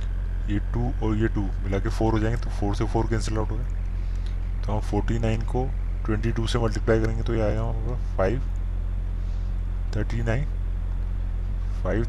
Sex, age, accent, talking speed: male, 20-39, native, 165 wpm